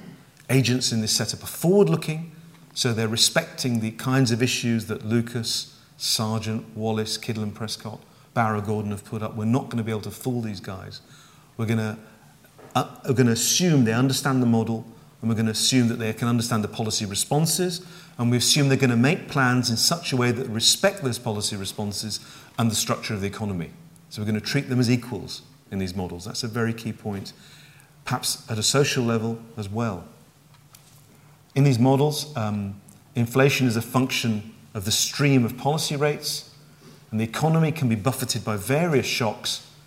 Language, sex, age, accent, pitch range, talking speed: English, male, 40-59, British, 110-145 Hz, 190 wpm